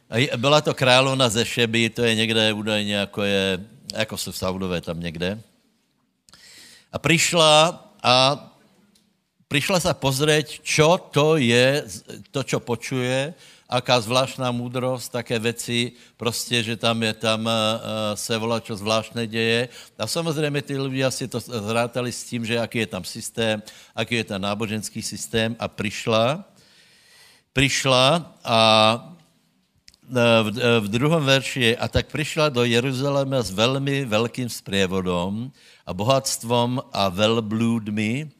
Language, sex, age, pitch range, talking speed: Slovak, male, 60-79, 110-135 Hz, 135 wpm